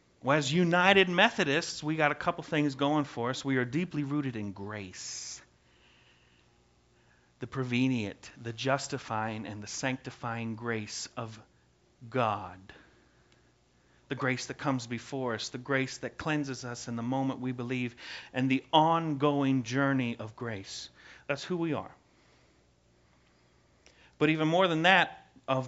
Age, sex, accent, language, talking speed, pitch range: 40-59, male, American, English, 140 wpm, 110-155 Hz